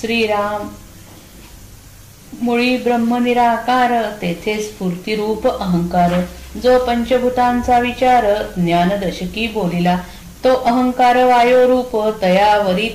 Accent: native